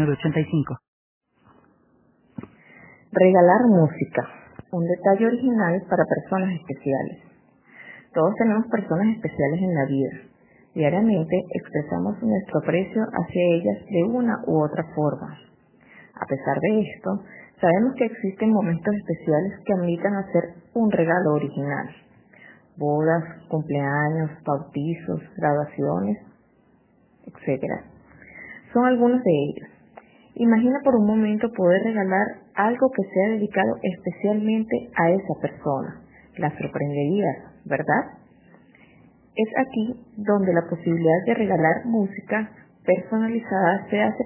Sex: female